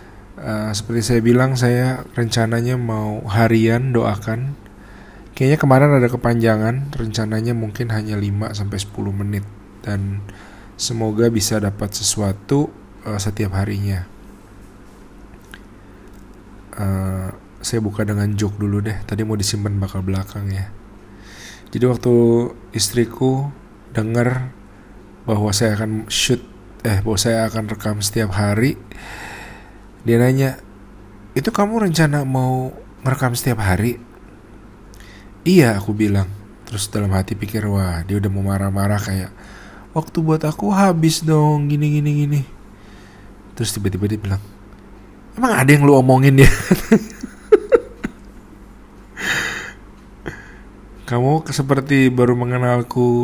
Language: Indonesian